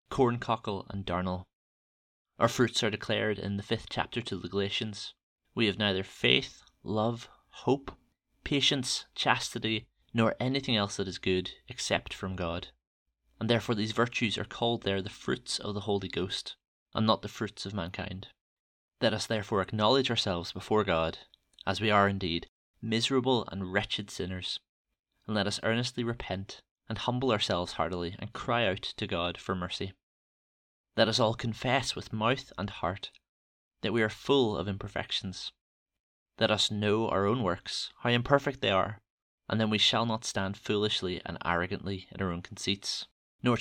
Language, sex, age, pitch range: English, male, 20-39, 95-115 Hz